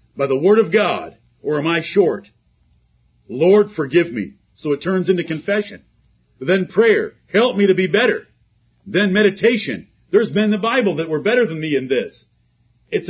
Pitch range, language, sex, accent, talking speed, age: 150-210 Hz, English, male, American, 175 wpm, 50-69